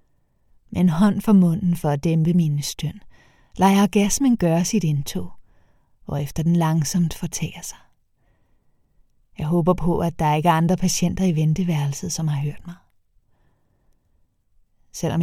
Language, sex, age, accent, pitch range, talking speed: Danish, female, 30-49, native, 150-185 Hz, 145 wpm